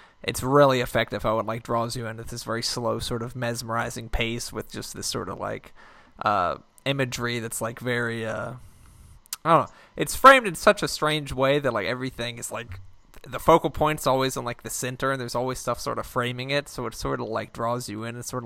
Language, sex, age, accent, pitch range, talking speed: English, male, 20-39, American, 115-130 Hz, 230 wpm